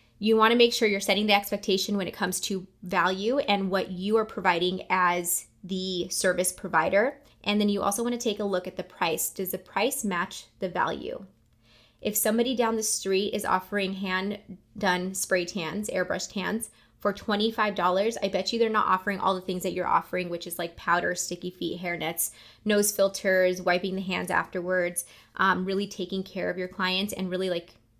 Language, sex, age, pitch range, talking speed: English, female, 20-39, 180-205 Hz, 200 wpm